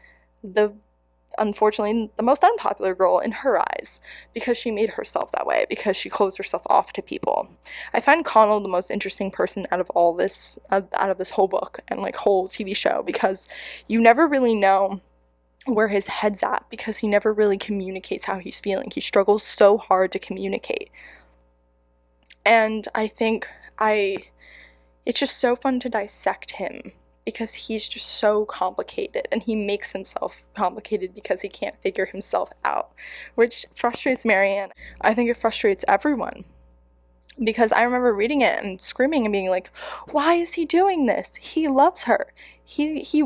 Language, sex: English, female